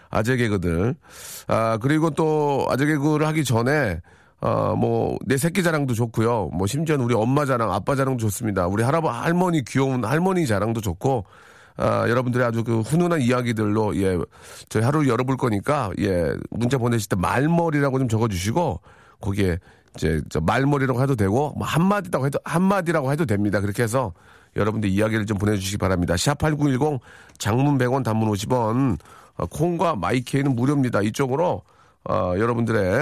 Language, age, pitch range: Korean, 40-59, 105-140 Hz